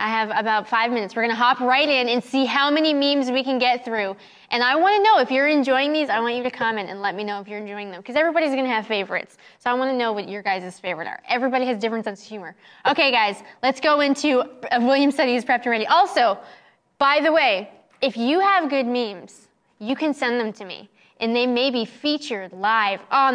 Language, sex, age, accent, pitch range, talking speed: English, female, 10-29, American, 230-310 Hz, 240 wpm